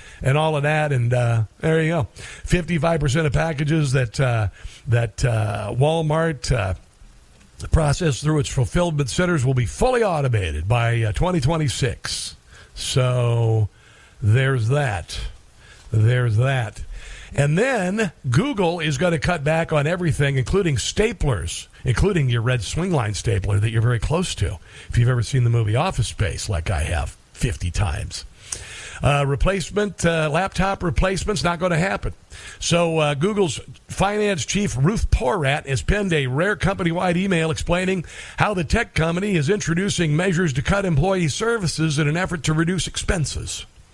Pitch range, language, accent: 120-175 Hz, English, American